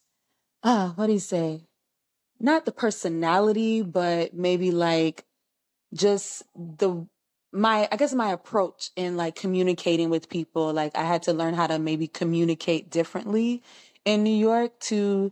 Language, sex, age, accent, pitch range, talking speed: English, female, 20-39, American, 165-210 Hz, 145 wpm